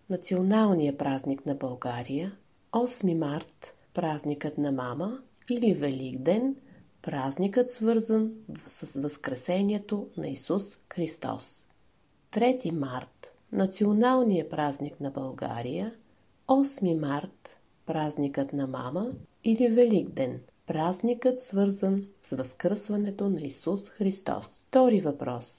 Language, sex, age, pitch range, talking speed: Bulgarian, female, 50-69, 140-220 Hz, 95 wpm